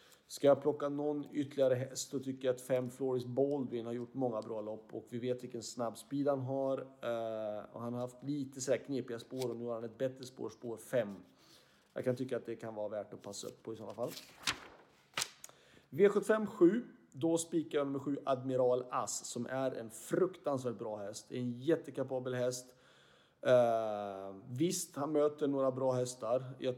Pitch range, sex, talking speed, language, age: 115-140 Hz, male, 190 wpm, Swedish, 30-49